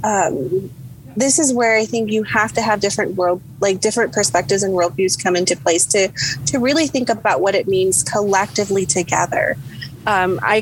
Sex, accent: female, American